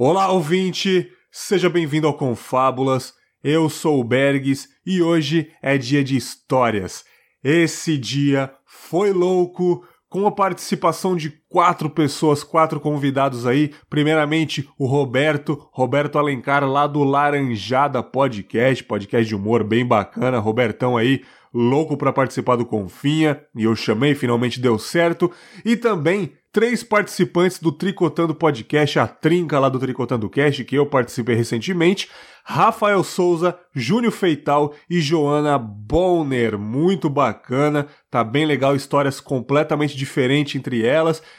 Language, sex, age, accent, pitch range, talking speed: Portuguese, male, 30-49, Brazilian, 130-165 Hz, 130 wpm